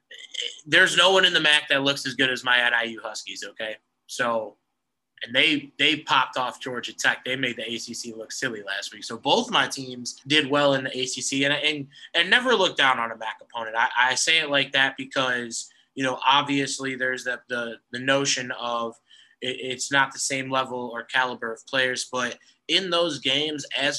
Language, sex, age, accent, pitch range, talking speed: English, male, 20-39, American, 125-140 Hz, 205 wpm